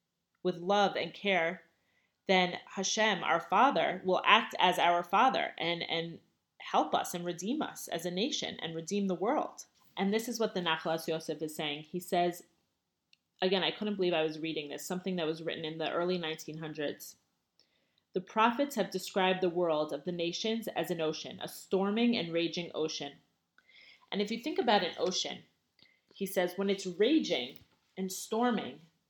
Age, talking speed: 30-49, 175 wpm